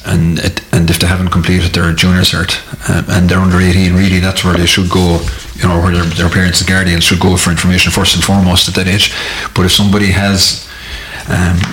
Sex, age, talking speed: male, 30-49, 225 wpm